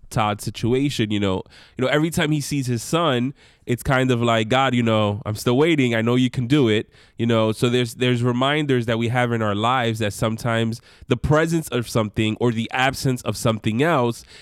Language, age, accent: English, 20-39, American